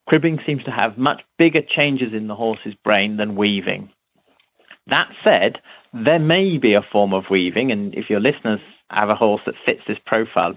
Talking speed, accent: 195 wpm, British